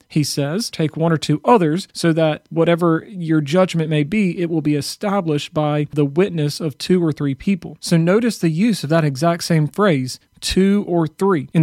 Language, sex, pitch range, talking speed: English, male, 150-195 Hz, 200 wpm